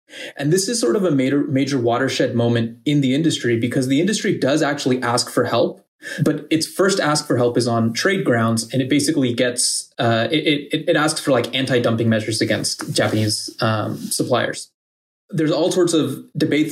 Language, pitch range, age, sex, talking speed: English, 120-150 Hz, 20-39, male, 190 wpm